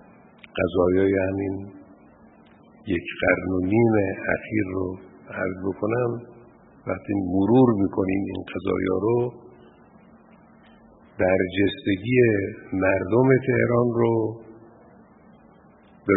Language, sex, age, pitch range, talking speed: Persian, male, 50-69, 95-110 Hz, 80 wpm